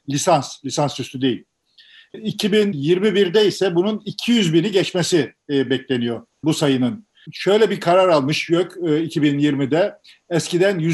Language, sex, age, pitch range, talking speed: Turkish, male, 50-69, 155-195 Hz, 120 wpm